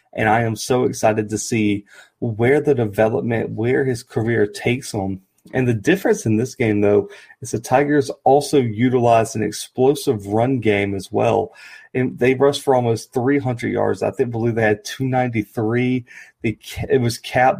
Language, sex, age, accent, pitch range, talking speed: English, male, 30-49, American, 110-130 Hz, 180 wpm